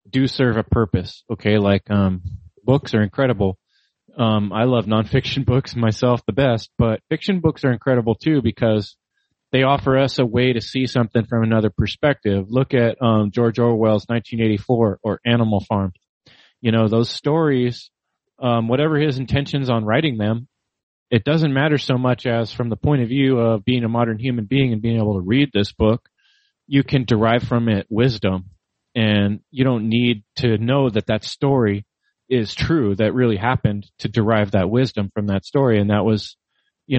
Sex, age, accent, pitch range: male, 30-49, American, 110-125 Hz